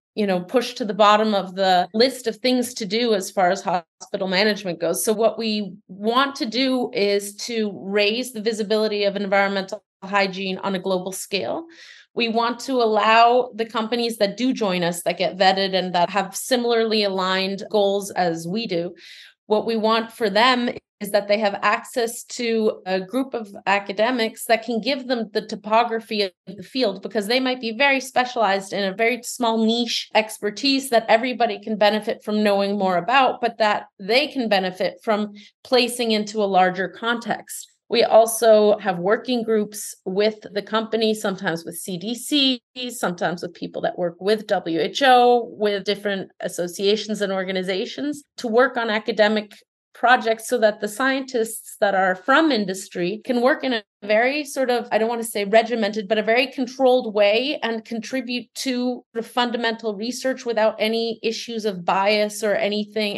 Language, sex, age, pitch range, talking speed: English, female, 30-49, 200-235 Hz, 170 wpm